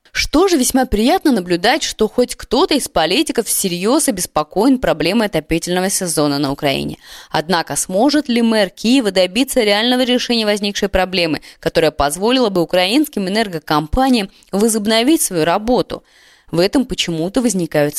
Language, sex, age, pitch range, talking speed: Russian, female, 20-39, 180-235 Hz, 130 wpm